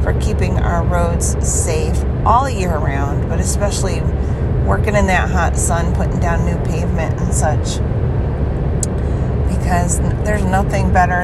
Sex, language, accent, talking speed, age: female, English, American, 130 wpm, 30-49